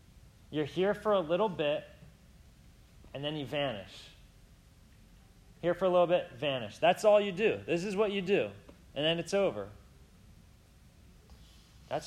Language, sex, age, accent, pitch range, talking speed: English, male, 30-49, American, 105-170 Hz, 150 wpm